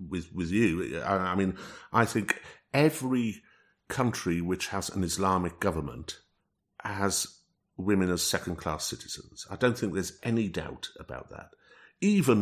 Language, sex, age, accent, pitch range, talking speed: English, male, 50-69, British, 90-125 Hz, 145 wpm